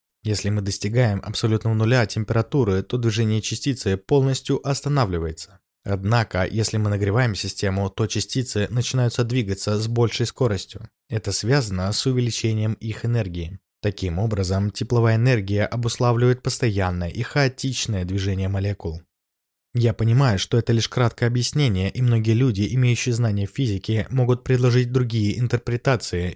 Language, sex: Russian, male